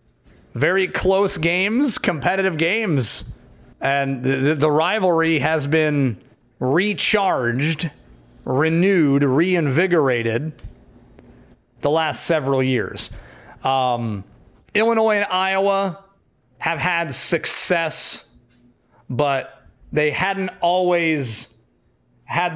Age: 30-49